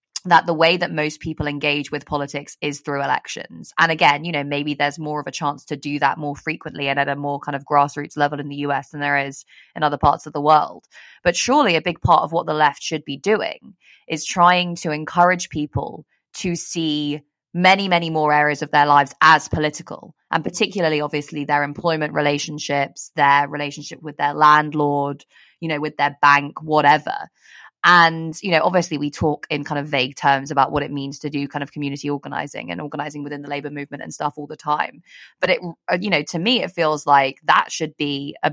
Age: 20-39